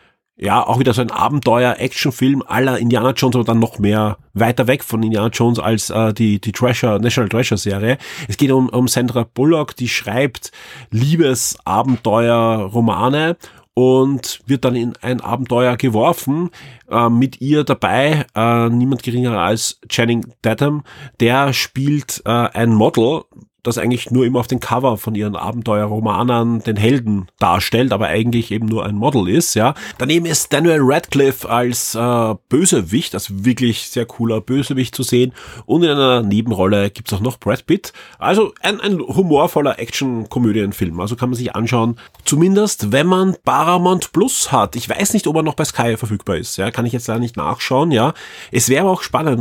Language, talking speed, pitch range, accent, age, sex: German, 170 wpm, 115-135 Hz, German, 30-49, male